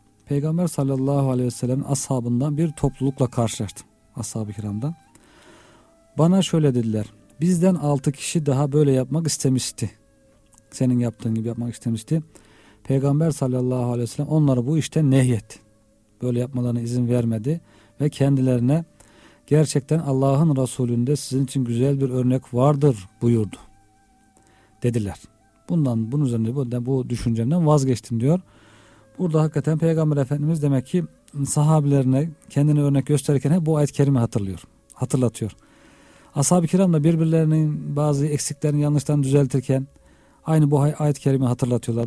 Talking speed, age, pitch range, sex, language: 125 wpm, 50-69, 120-150 Hz, male, Turkish